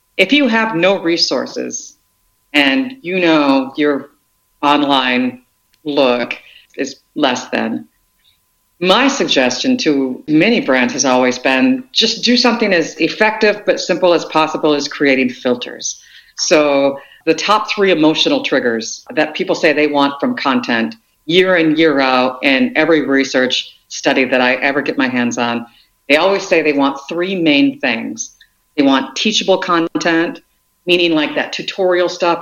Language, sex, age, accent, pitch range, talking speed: English, female, 50-69, American, 140-200 Hz, 145 wpm